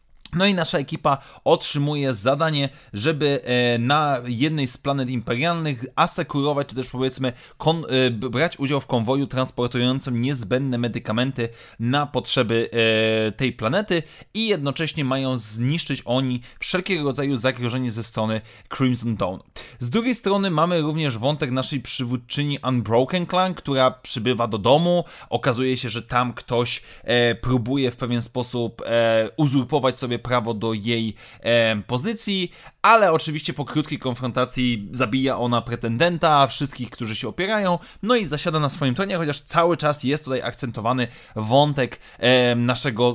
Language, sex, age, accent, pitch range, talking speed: Polish, male, 30-49, native, 120-150 Hz, 130 wpm